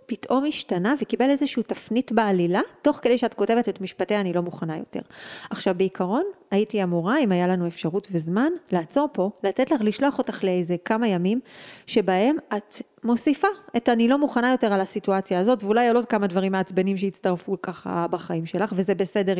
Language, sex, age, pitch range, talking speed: Hebrew, female, 30-49, 185-245 Hz, 175 wpm